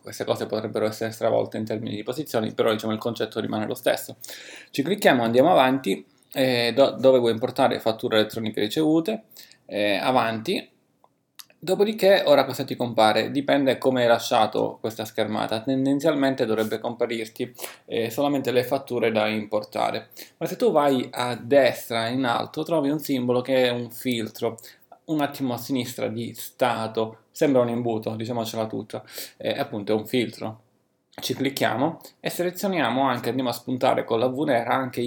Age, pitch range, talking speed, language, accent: 20-39, 110-135 Hz, 160 wpm, Italian, native